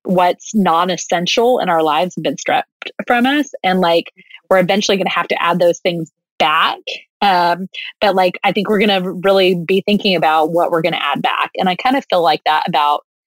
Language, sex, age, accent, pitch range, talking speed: English, female, 20-39, American, 160-195 Hz, 215 wpm